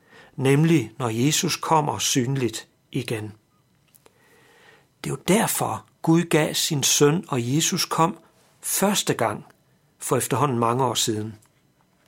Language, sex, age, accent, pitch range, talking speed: Danish, male, 60-79, native, 130-175 Hz, 120 wpm